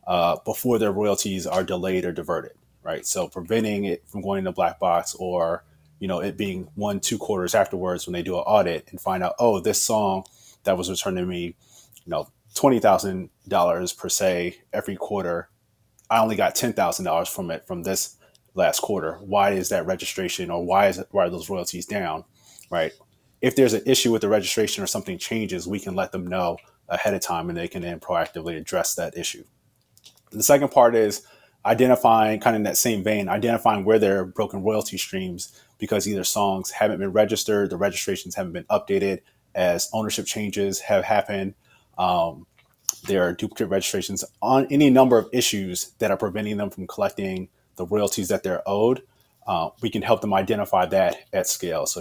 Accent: American